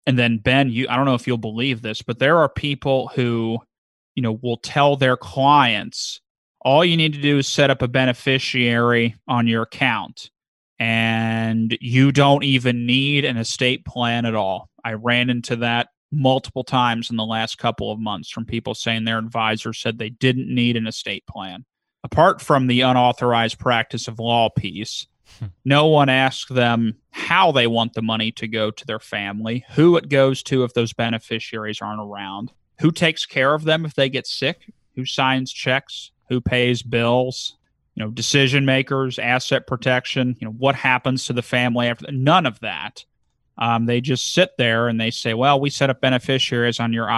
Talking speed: 185 wpm